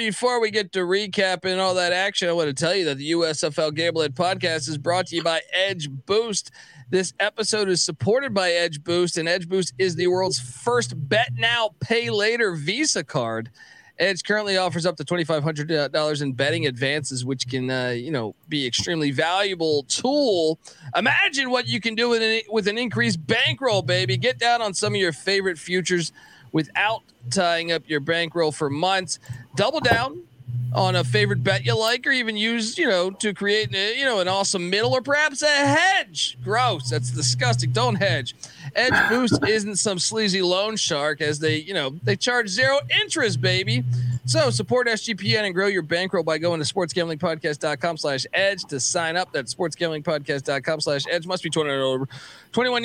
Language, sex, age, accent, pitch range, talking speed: English, male, 40-59, American, 145-210 Hz, 180 wpm